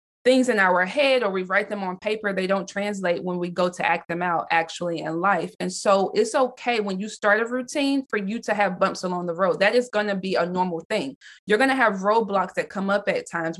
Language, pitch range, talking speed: English, 180-215 Hz, 255 wpm